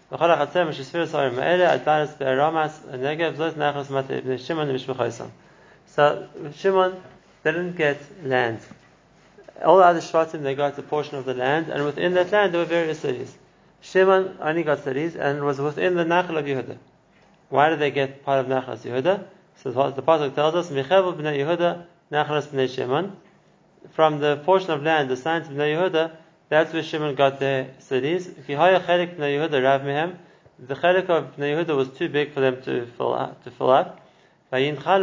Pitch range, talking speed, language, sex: 135-170 Hz, 130 wpm, English, male